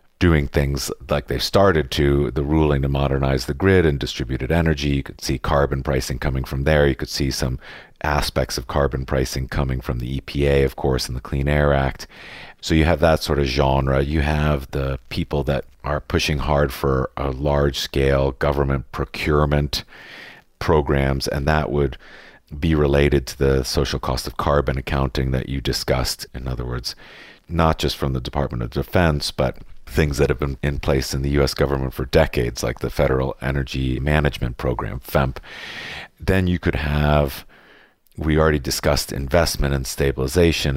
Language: English